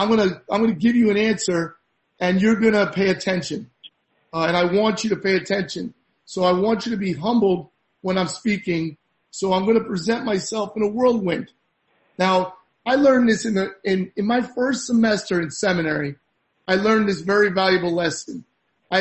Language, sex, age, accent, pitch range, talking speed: English, male, 40-59, American, 185-225 Hz, 185 wpm